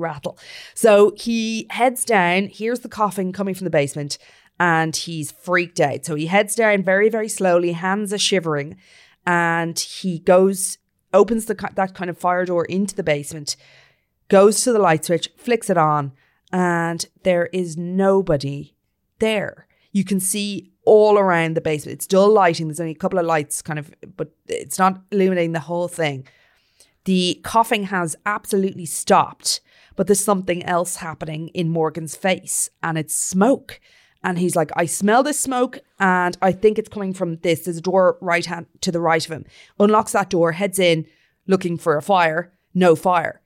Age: 20-39